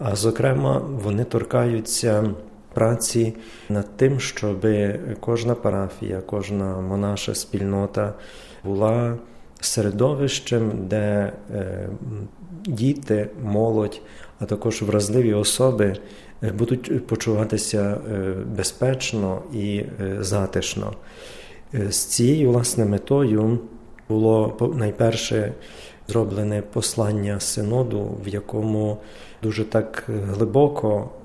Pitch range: 100-115 Hz